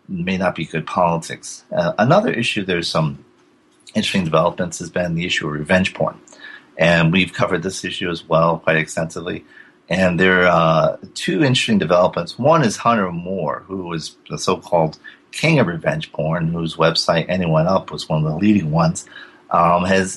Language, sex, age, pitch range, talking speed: English, male, 40-59, 80-105 Hz, 175 wpm